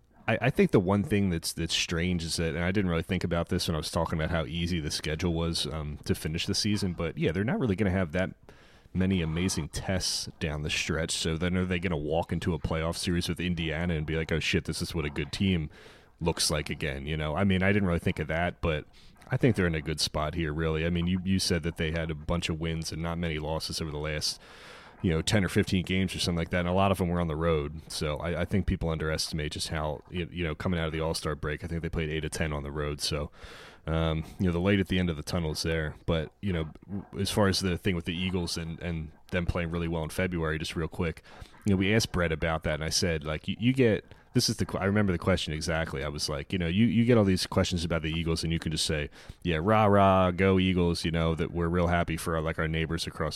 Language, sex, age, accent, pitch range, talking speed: English, male, 30-49, American, 80-95 Hz, 280 wpm